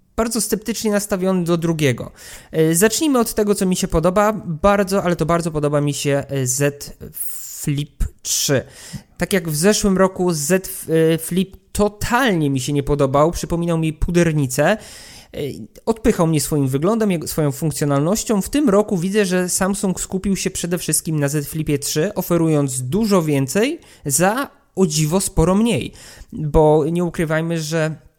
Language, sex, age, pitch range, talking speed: Polish, male, 20-39, 145-185 Hz, 145 wpm